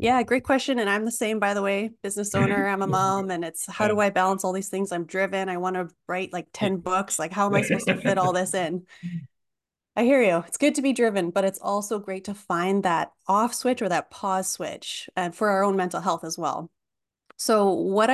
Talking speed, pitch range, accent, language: 240 wpm, 180-215 Hz, American, English